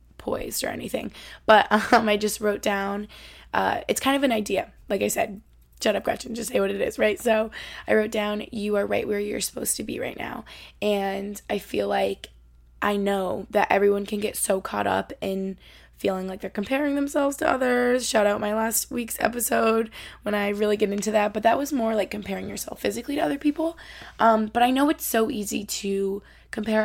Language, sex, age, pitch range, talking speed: English, female, 20-39, 205-240 Hz, 210 wpm